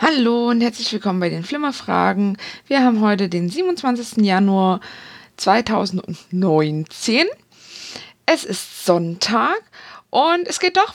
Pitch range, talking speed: 195-270 Hz, 115 wpm